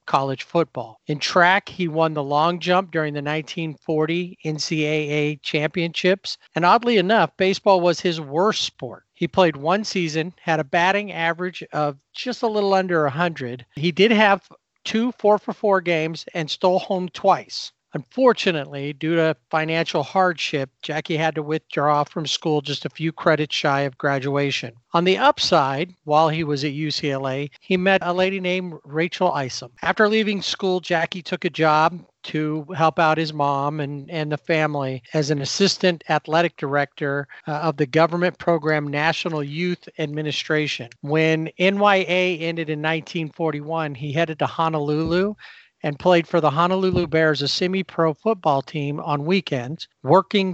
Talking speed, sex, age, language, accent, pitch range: 160 wpm, male, 50-69, English, American, 150-180 Hz